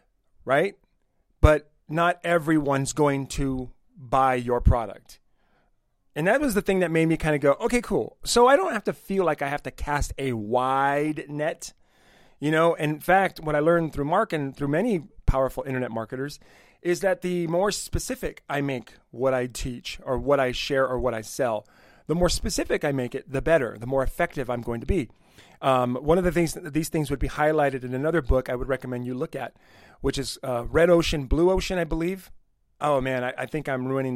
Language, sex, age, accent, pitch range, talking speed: English, male, 30-49, American, 130-160 Hz, 210 wpm